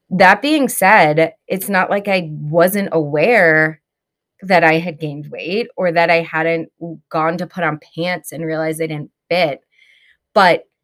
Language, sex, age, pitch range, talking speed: English, female, 20-39, 155-195 Hz, 160 wpm